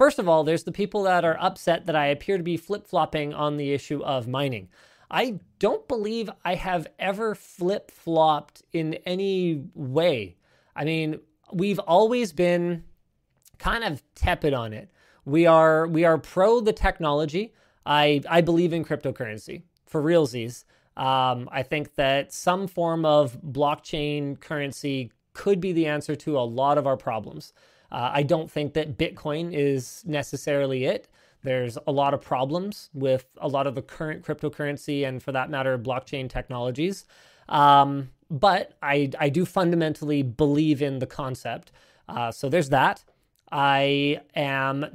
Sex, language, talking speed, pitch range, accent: male, English, 155 wpm, 140-170 Hz, American